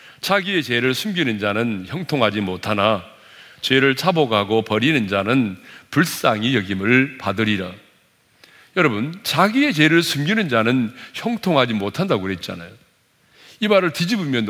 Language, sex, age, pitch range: Korean, male, 40-59, 105-165 Hz